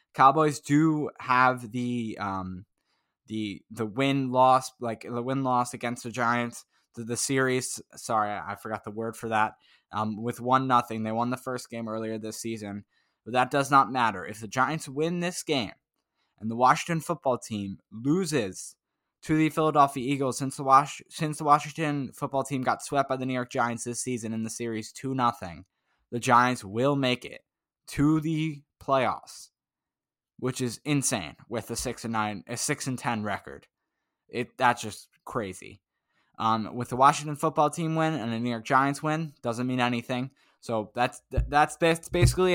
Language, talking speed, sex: English, 170 wpm, male